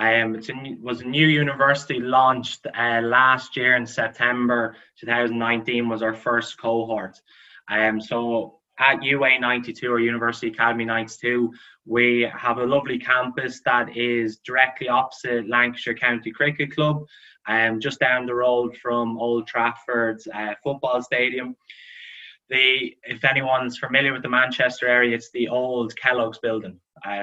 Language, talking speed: English, 135 wpm